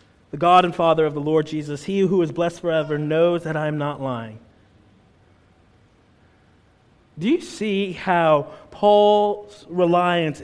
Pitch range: 150-225 Hz